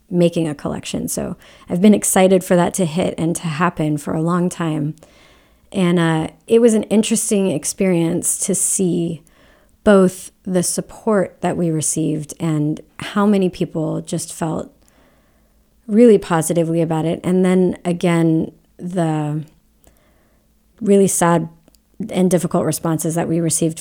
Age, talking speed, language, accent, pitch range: 30-49, 140 wpm, English, American, 160-190 Hz